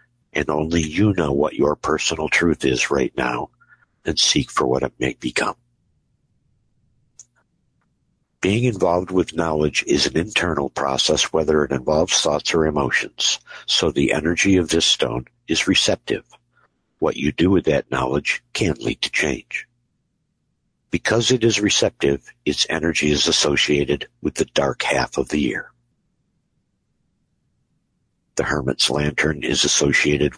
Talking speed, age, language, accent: 140 wpm, 60-79, English, American